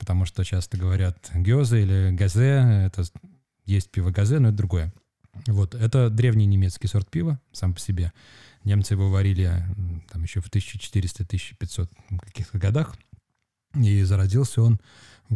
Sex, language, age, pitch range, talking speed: male, Russian, 20-39, 95-115 Hz, 140 wpm